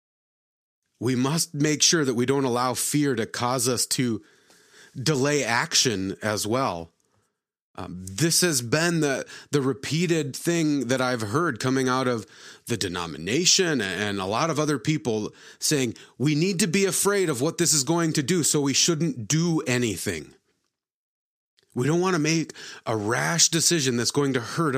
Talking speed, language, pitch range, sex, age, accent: 165 wpm, English, 120-155 Hz, male, 30-49, American